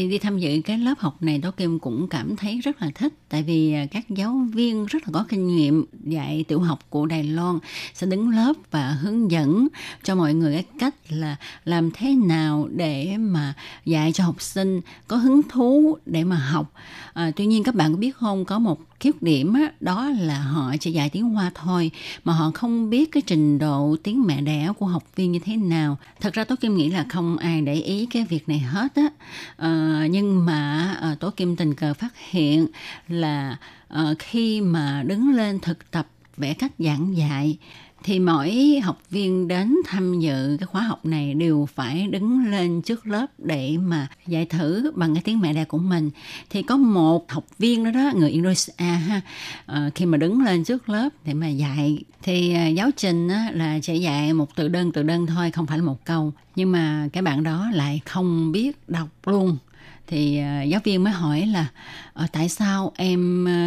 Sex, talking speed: female, 200 wpm